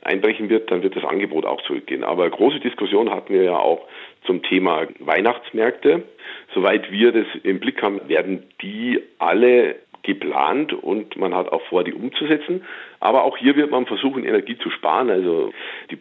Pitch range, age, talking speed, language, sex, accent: 350-420 Hz, 50-69, 175 wpm, German, male, German